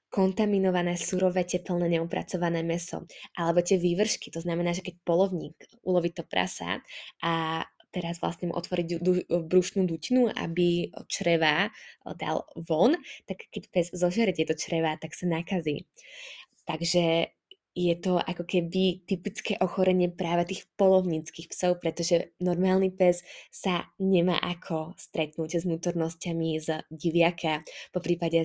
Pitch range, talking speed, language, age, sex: 170-185 Hz, 130 wpm, Slovak, 20-39, female